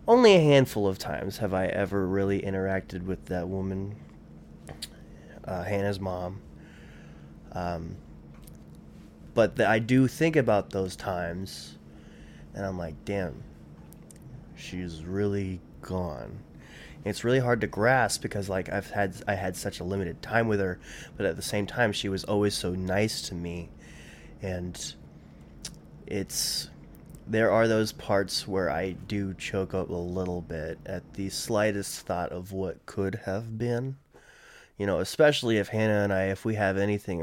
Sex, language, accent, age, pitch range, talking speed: male, English, American, 20-39, 85-105 Hz, 150 wpm